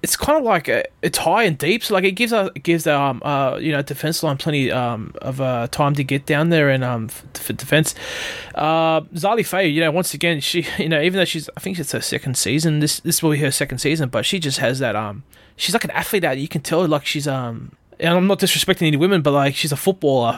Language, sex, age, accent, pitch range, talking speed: English, male, 20-39, Australian, 140-175 Hz, 270 wpm